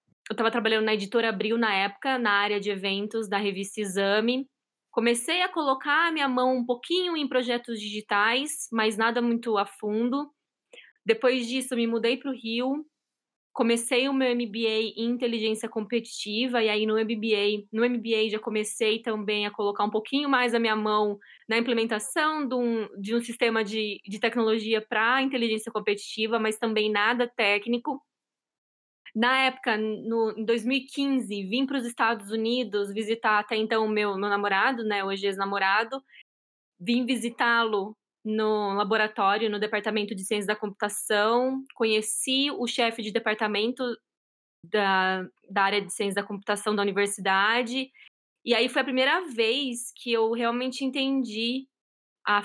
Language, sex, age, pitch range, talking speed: Portuguese, female, 20-39, 210-245 Hz, 150 wpm